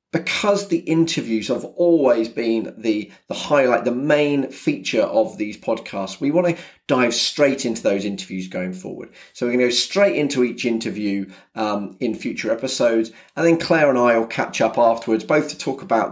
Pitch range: 105-130 Hz